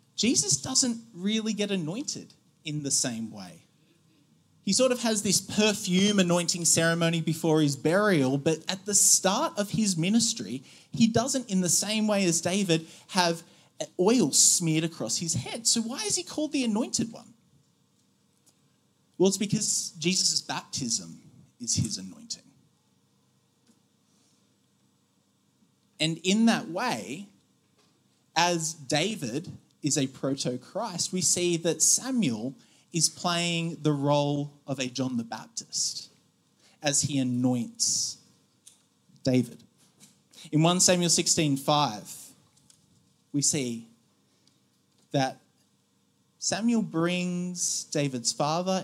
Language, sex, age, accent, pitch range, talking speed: English, male, 30-49, Australian, 140-195 Hz, 115 wpm